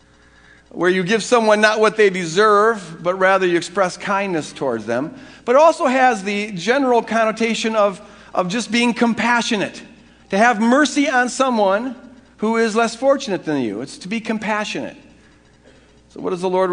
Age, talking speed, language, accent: 50-69, 170 wpm, English, American